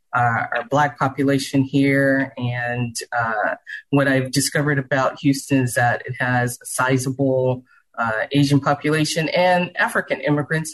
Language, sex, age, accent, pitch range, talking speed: English, female, 30-49, American, 125-145 Hz, 135 wpm